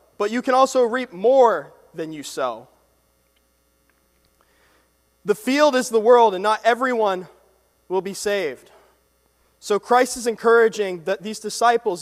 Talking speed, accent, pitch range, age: 130 wpm, American, 195-250 Hz, 20-39